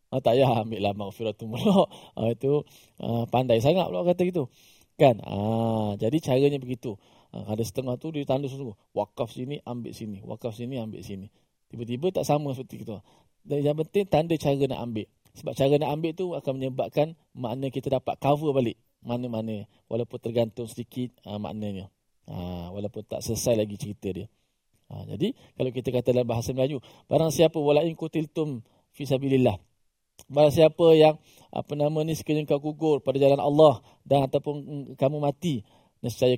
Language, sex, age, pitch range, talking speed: Malayalam, male, 20-39, 120-155 Hz, 165 wpm